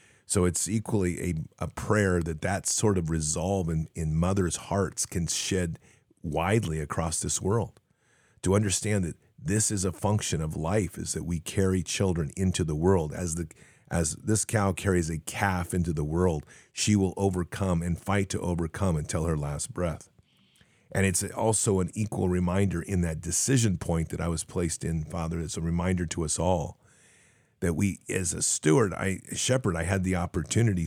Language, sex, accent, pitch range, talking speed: English, male, American, 85-100 Hz, 185 wpm